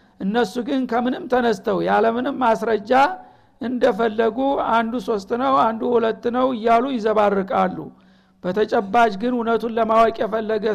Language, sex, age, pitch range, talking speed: Amharic, male, 60-79, 210-235 Hz, 110 wpm